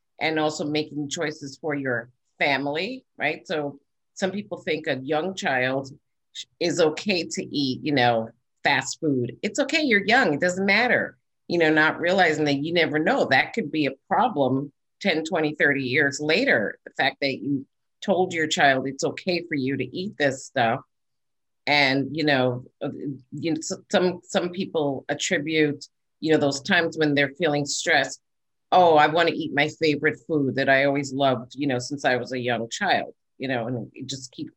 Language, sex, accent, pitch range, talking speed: English, female, American, 130-160 Hz, 180 wpm